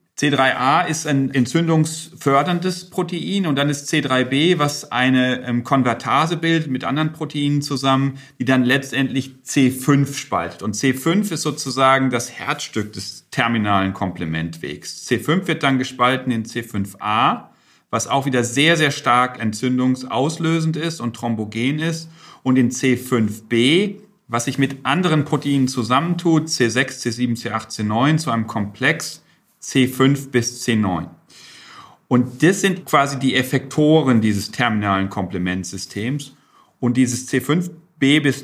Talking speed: 125 wpm